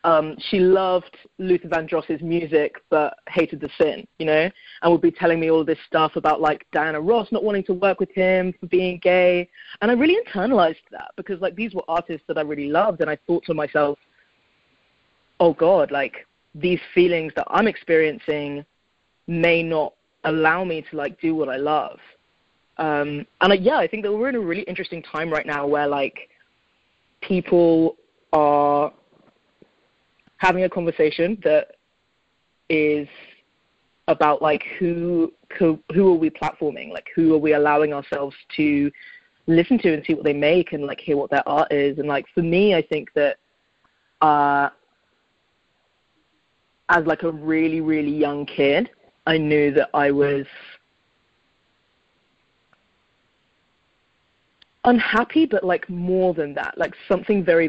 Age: 20-39